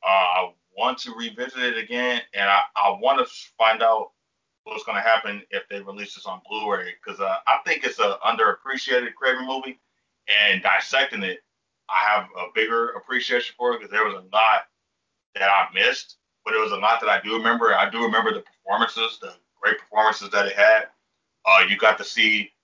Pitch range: 105-130 Hz